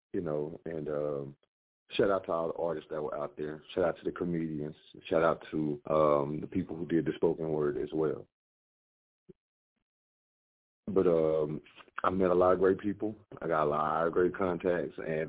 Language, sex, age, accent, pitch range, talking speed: English, male, 40-59, American, 80-95 Hz, 180 wpm